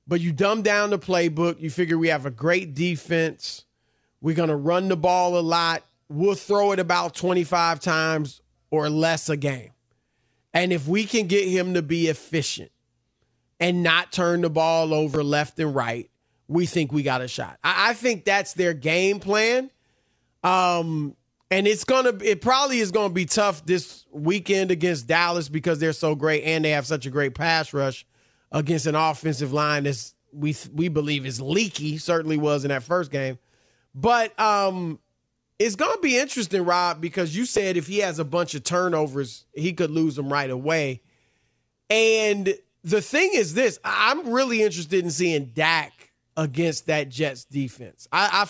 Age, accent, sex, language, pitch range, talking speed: 30-49, American, male, English, 150-195 Hz, 180 wpm